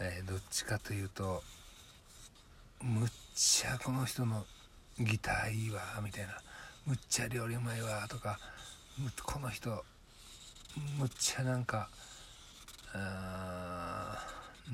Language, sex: Japanese, male